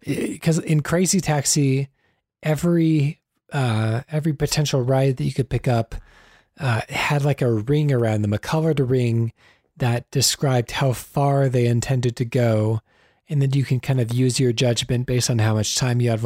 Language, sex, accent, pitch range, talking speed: English, male, American, 115-140 Hz, 175 wpm